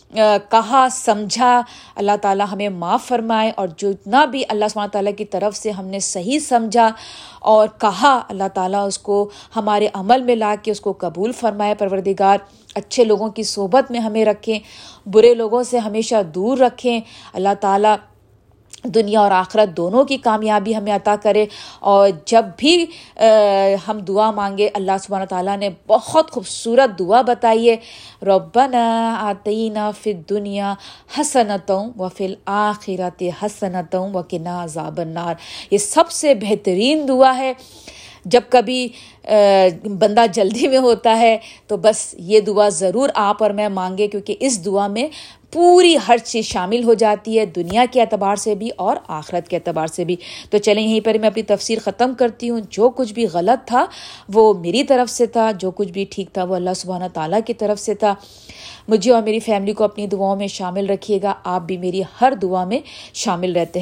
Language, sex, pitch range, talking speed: Urdu, female, 195-230 Hz, 175 wpm